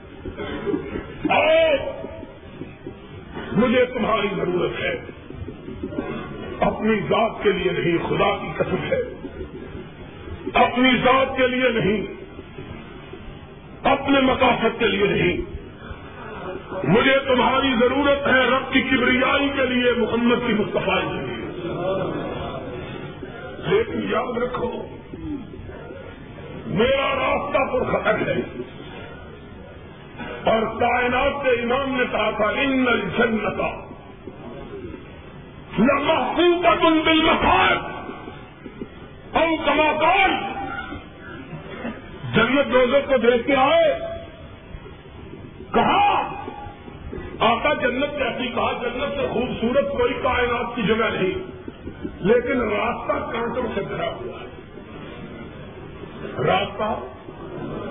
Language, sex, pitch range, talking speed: Urdu, male, 220-280 Hz, 90 wpm